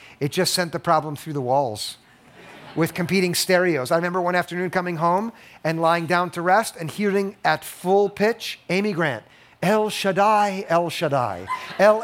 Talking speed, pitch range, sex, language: 170 wpm, 155-205 Hz, male, English